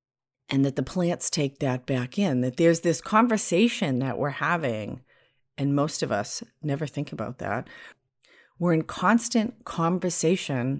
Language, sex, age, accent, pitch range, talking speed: English, female, 50-69, American, 130-170 Hz, 150 wpm